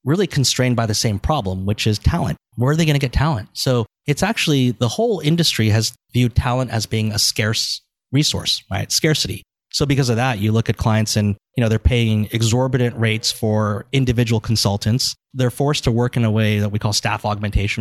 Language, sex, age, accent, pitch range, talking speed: English, male, 30-49, American, 110-130 Hz, 210 wpm